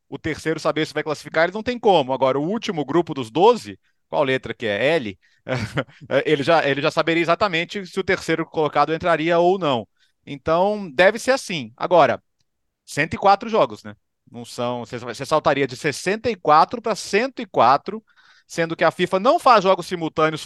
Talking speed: 170 wpm